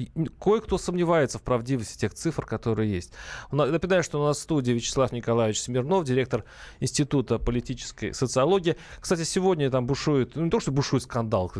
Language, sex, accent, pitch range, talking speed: Russian, male, native, 115-155 Hz, 160 wpm